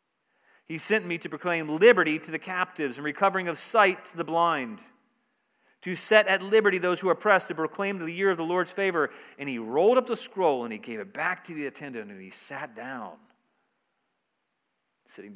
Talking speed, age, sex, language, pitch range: 200 wpm, 40-59, male, English, 115-185 Hz